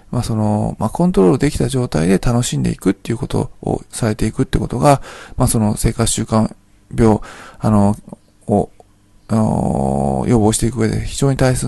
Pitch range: 105-135 Hz